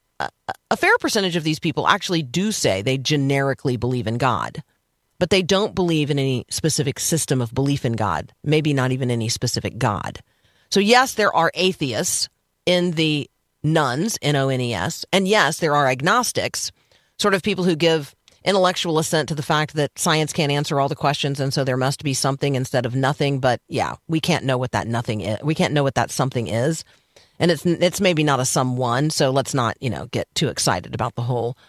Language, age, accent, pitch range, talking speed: English, 40-59, American, 130-180 Hz, 205 wpm